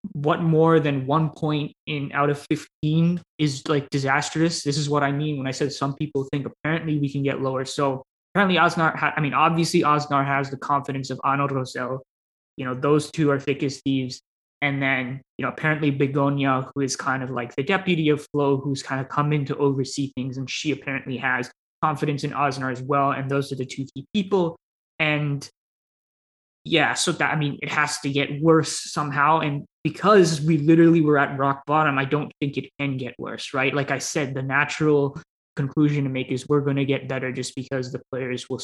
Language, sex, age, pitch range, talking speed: English, male, 20-39, 135-150 Hz, 210 wpm